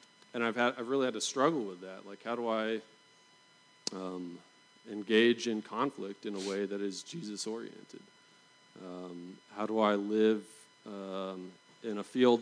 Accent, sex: American, male